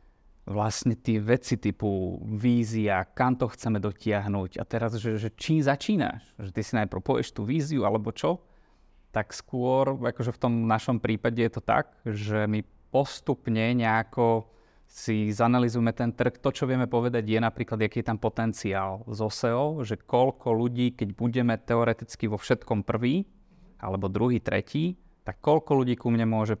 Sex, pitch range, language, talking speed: male, 105-125 Hz, Slovak, 160 wpm